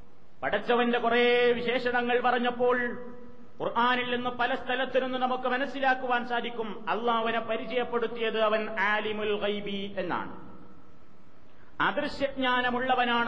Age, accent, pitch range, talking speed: 30-49, native, 235-250 Hz, 70 wpm